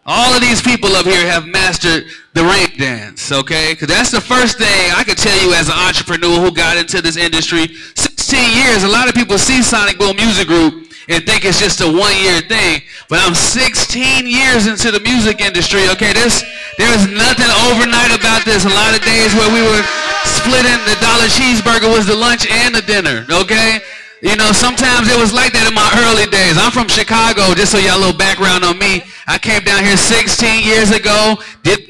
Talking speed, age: 210 wpm, 20-39